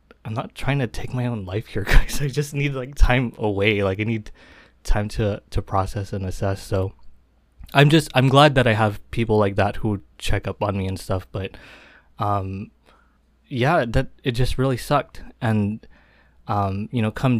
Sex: male